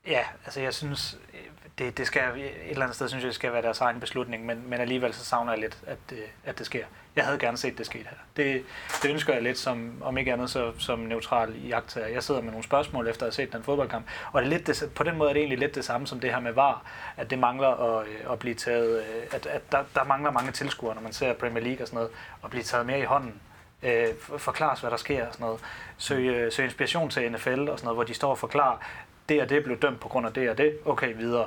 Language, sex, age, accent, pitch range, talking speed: Danish, male, 30-49, native, 115-135 Hz, 270 wpm